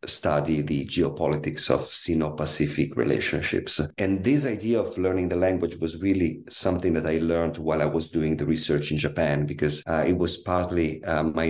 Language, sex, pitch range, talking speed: English, male, 75-90 Hz, 175 wpm